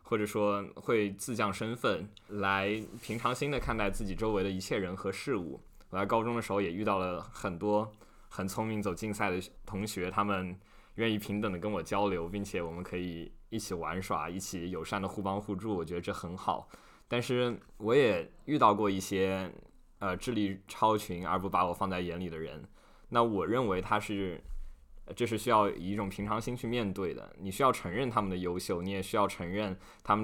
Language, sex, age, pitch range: Chinese, male, 20-39, 95-105 Hz